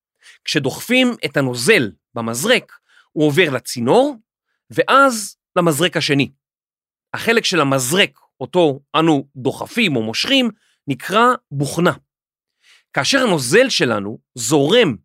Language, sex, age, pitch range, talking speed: Hebrew, male, 40-59, 145-240 Hz, 95 wpm